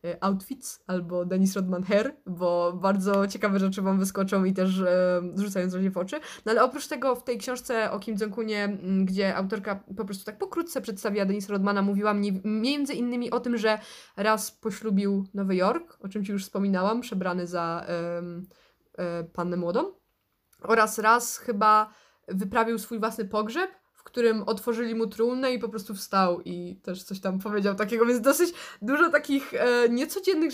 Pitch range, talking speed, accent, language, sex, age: 195-240 Hz, 170 wpm, native, Polish, female, 20-39